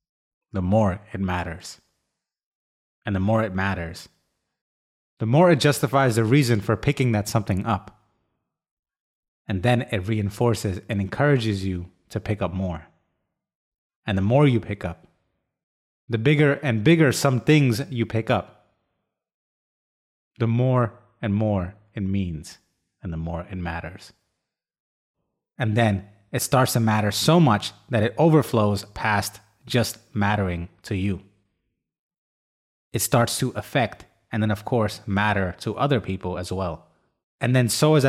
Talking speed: 145 wpm